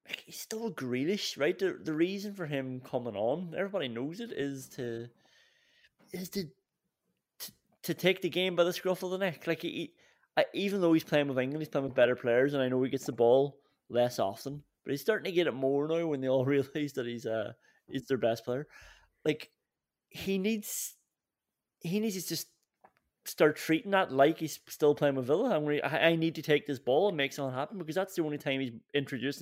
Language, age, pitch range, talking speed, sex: English, 30-49, 125-165 Hz, 220 wpm, male